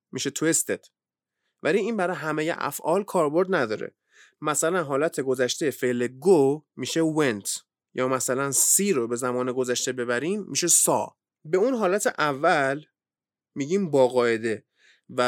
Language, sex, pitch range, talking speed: Persian, male, 125-185 Hz, 130 wpm